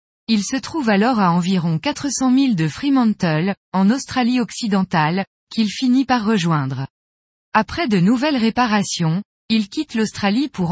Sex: female